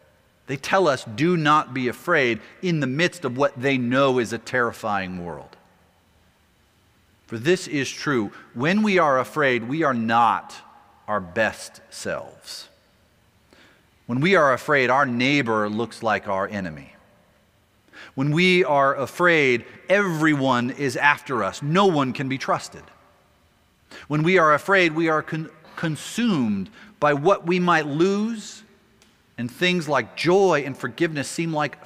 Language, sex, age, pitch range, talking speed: English, male, 40-59, 120-170 Hz, 140 wpm